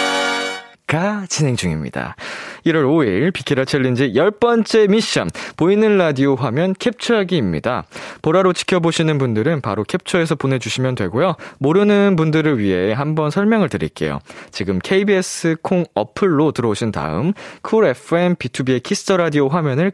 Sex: male